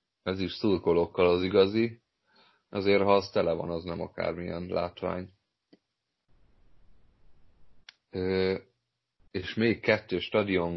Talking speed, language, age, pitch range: 100 wpm, Hungarian, 30-49, 85-105 Hz